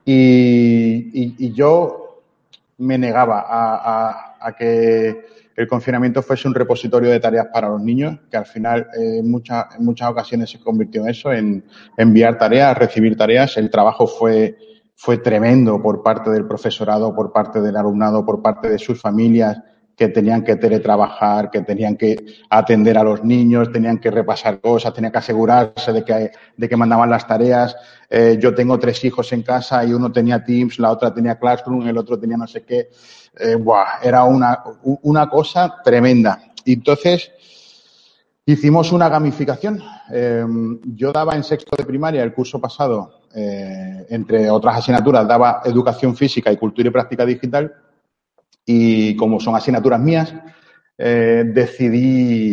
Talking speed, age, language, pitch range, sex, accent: 160 wpm, 30-49, Spanish, 115-125 Hz, male, Spanish